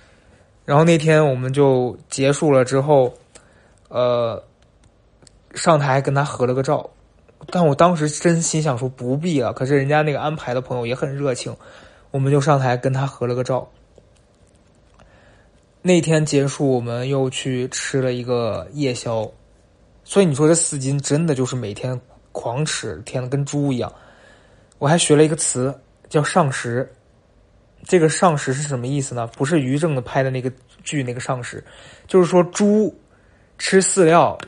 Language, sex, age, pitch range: Chinese, male, 20-39, 125-155 Hz